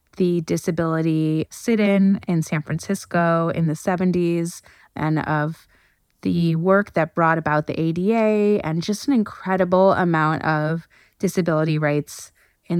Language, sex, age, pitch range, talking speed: English, female, 20-39, 160-190 Hz, 130 wpm